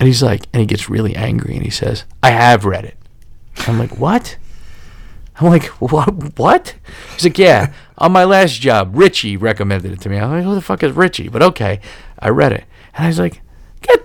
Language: English